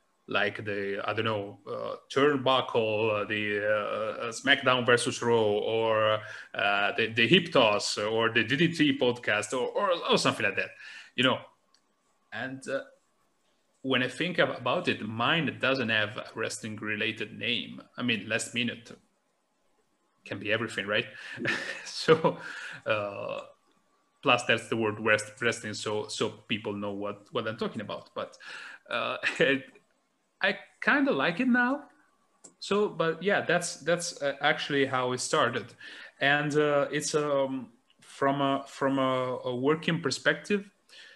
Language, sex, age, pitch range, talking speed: English, male, 30-49, 115-150 Hz, 145 wpm